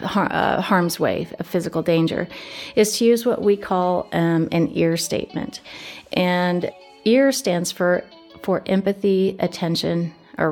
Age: 40-59